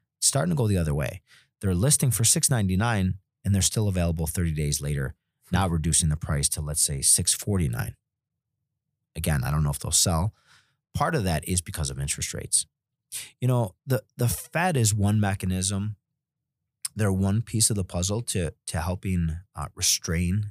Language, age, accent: English, 30-49, American